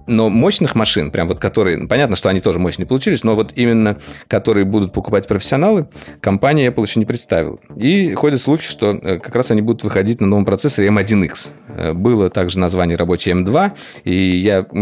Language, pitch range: Russian, 90-120 Hz